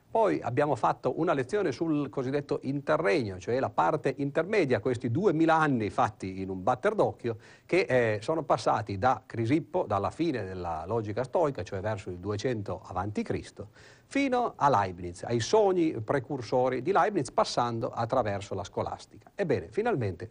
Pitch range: 100-135 Hz